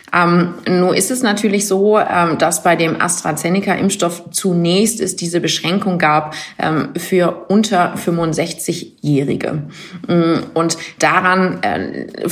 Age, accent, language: 30-49, German, German